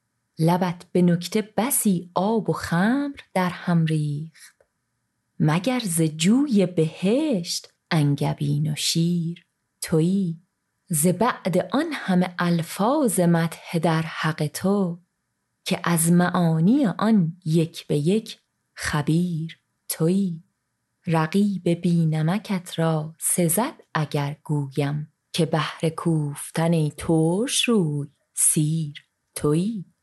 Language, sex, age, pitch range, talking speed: Persian, female, 30-49, 160-195 Hz, 100 wpm